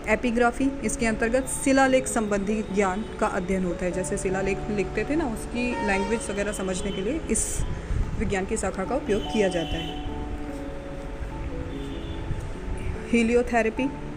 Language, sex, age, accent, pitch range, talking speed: Hindi, female, 20-39, native, 195-240 Hz, 135 wpm